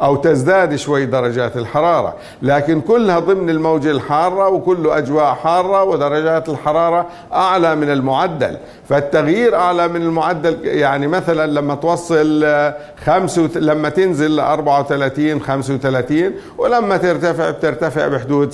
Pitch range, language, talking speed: 140-170 Hz, Arabic, 120 wpm